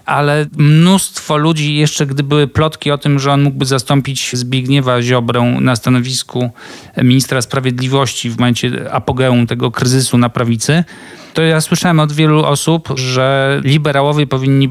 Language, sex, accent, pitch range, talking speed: Polish, male, native, 125-145 Hz, 145 wpm